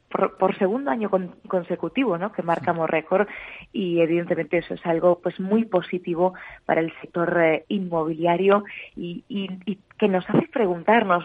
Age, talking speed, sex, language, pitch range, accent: 20-39, 160 wpm, female, Spanish, 170-195 Hz, Spanish